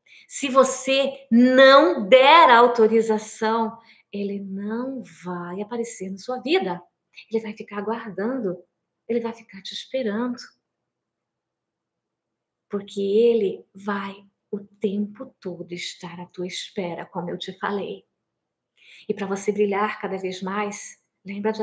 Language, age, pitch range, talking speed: Portuguese, 20-39, 200-265 Hz, 125 wpm